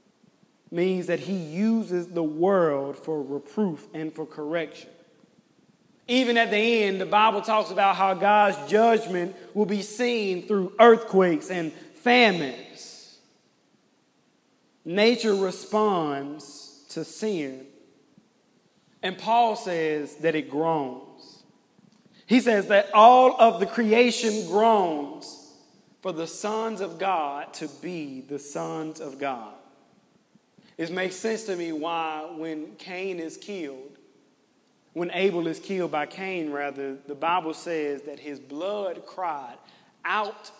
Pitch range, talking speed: 155-210 Hz, 125 wpm